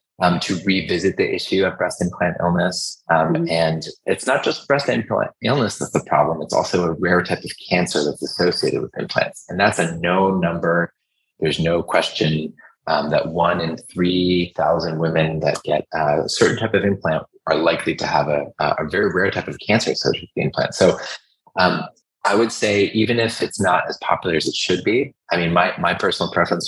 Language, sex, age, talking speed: English, male, 20-39, 200 wpm